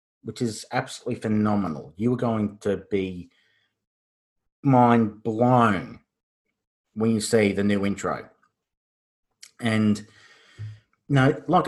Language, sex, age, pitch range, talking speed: English, male, 30-49, 100-120 Hz, 100 wpm